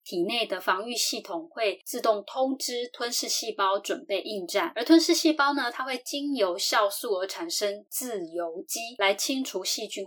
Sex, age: female, 20-39